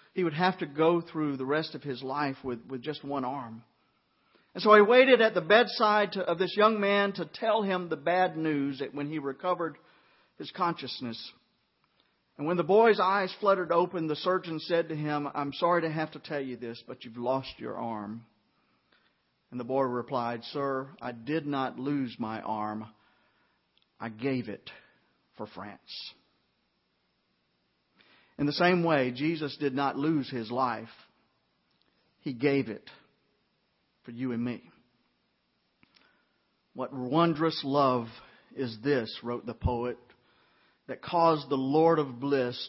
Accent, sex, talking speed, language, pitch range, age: American, male, 155 wpm, English, 125-180 Hz, 50-69